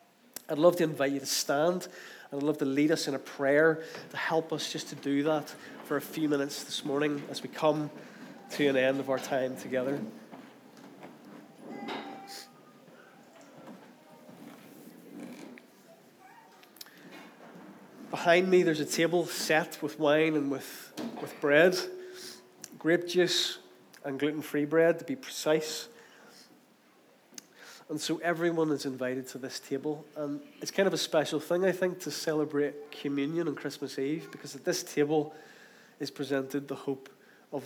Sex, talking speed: male, 145 wpm